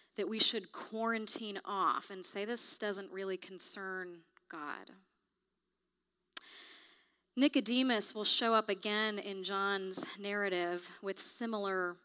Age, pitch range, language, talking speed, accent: 30-49, 195-255 Hz, English, 110 wpm, American